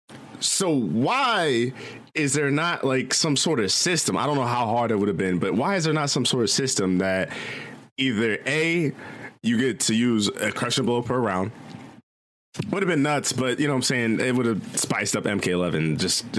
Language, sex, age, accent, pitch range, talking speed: English, male, 20-39, American, 115-170 Hz, 210 wpm